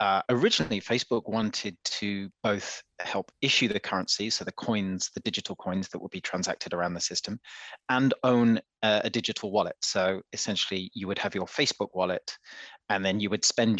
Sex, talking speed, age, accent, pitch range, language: male, 185 wpm, 30-49, British, 100-125 Hz, English